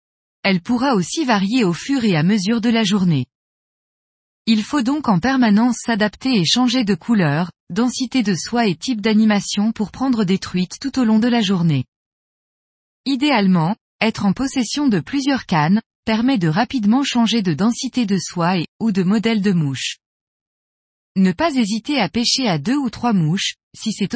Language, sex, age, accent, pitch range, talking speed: French, female, 20-39, French, 180-245 Hz, 175 wpm